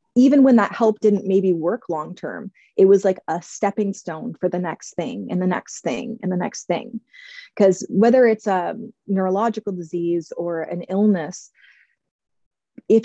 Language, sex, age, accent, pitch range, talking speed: English, female, 30-49, American, 175-215 Hz, 165 wpm